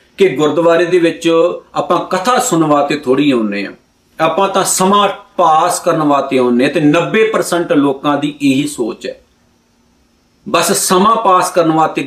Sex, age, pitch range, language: male, 50-69, 155-220 Hz, Punjabi